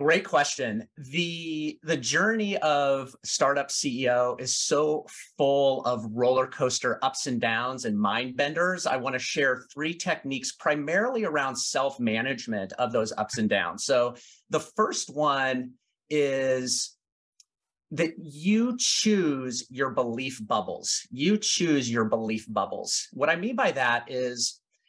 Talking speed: 135 wpm